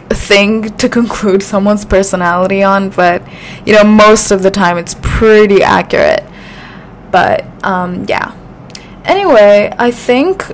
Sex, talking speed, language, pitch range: female, 125 wpm, English, 190-220 Hz